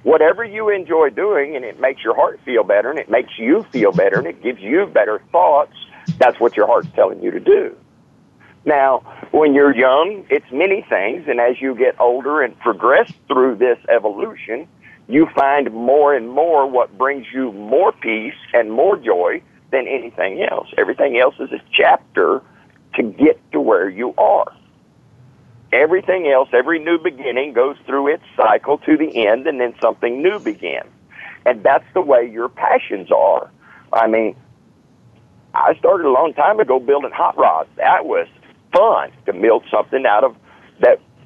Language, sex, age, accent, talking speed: English, male, 50-69, American, 175 wpm